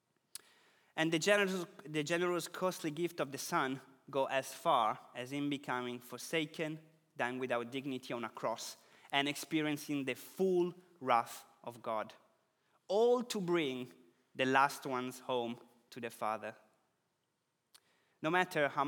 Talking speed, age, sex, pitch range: 135 wpm, 20-39, male, 125-160 Hz